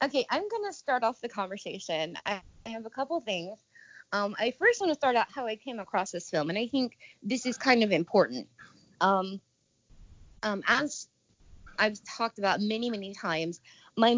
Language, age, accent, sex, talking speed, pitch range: English, 20-39, American, female, 185 wpm, 185-240 Hz